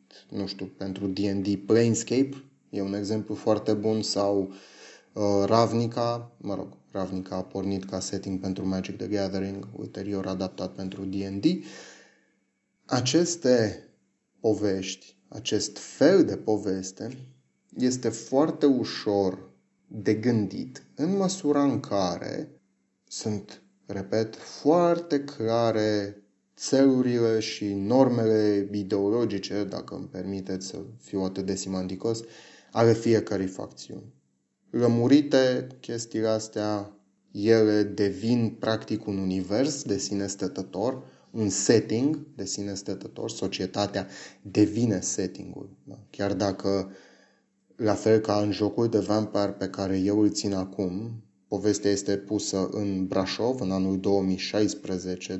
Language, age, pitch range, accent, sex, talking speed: Romanian, 30-49, 95-110 Hz, native, male, 115 wpm